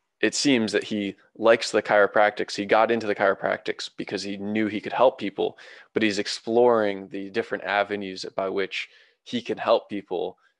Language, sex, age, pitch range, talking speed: English, male, 20-39, 100-130 Hz, 175 wpm